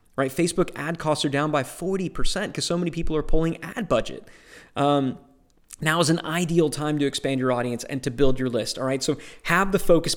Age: 30-49